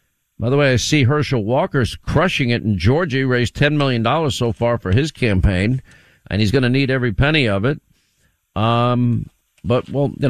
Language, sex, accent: English, male, American